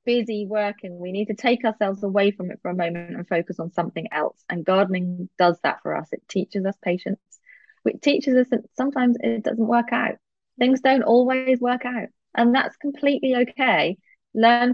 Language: English